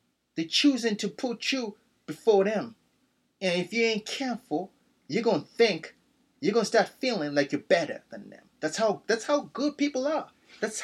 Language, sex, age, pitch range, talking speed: English, male, 30-49, 170-230 Hz, 185 wpm